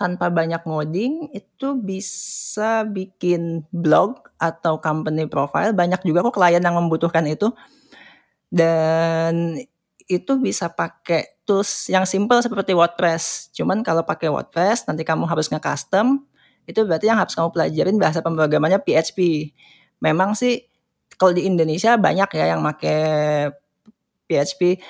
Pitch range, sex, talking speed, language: 160-200 Hz, female, 130 wpm, Indonesian